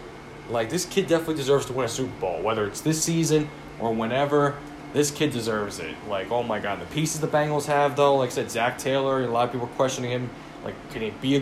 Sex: male